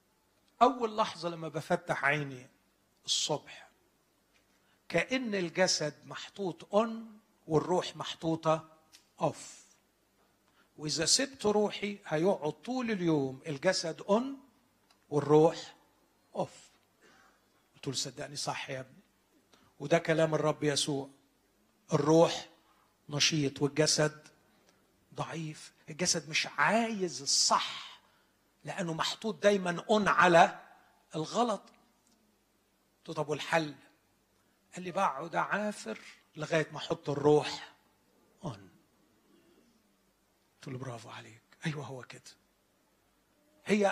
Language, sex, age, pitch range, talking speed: Arabic, male, 50-69, 145-190 Hz, 85 wpm